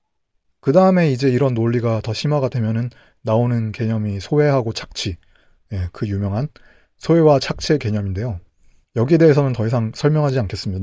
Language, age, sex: Korean, 30-49, male